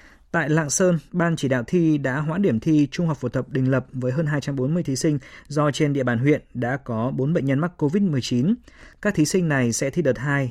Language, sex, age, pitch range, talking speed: Vietnamese, male, 20-39, 130-170 Hz, 240 wpm